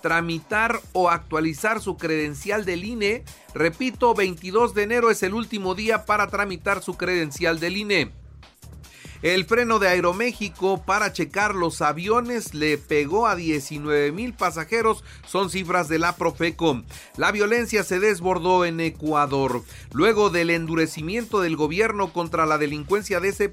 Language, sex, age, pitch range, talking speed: Spanish, male, 40-59, 155-210 Hz, 145 wpm